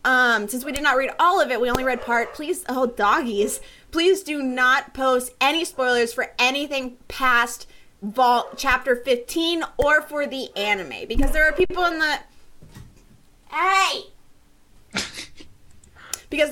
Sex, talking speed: female, 145 wpm